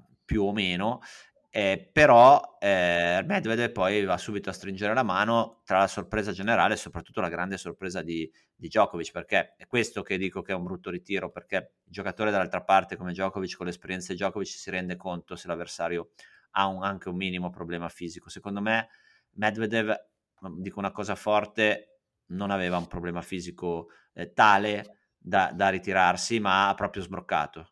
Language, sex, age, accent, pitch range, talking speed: Italian, male, 30-49, native, 95-115 Hz, 175 wpm